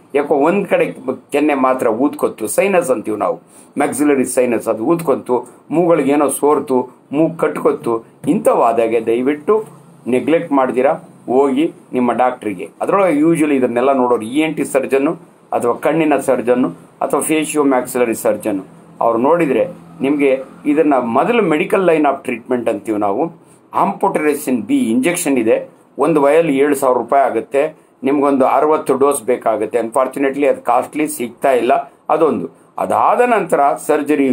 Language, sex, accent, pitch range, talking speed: Kannada, male, native, 125-155 Hz, 125 wpm